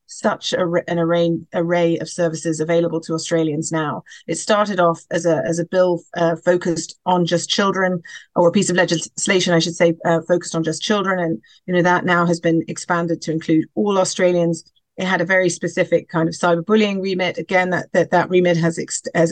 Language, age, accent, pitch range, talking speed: English, 40-59, British, 170-195 Hz, 205 wpm